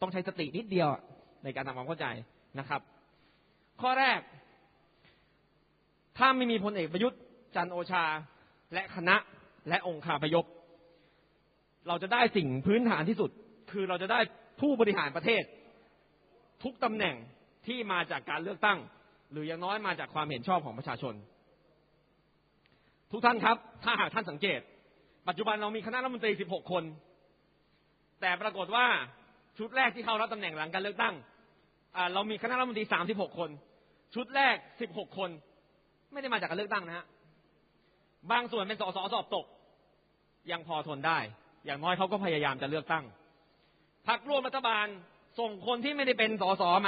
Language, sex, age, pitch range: Thai, male, 30-49, 165-220 Hz